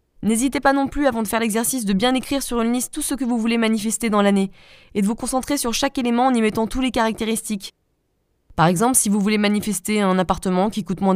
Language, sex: French, female